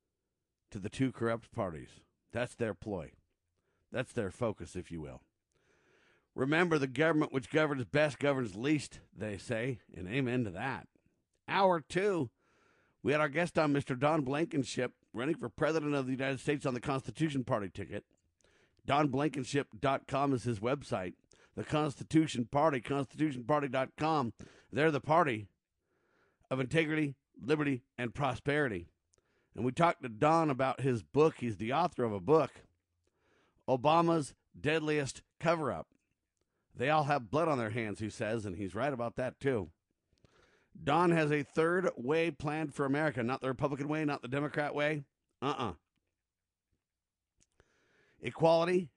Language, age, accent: English, 50-69, American